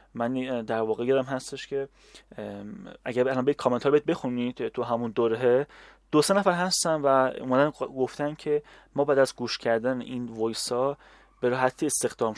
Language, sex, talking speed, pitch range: Persian, male, 155 wpm, 120-145 Hz